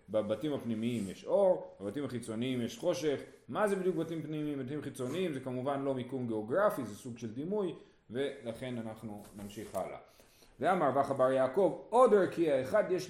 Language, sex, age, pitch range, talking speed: Hebrew, male, 30-49, 125-185 Hz, 160 wpm